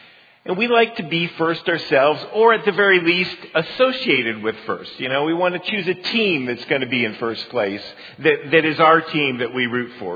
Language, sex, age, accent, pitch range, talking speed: English, male, 50-69, American, 140-185 Hz, 230 wpm